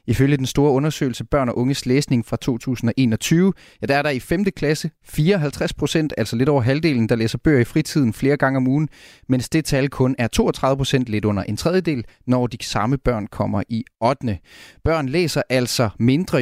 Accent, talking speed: native, 195 wpm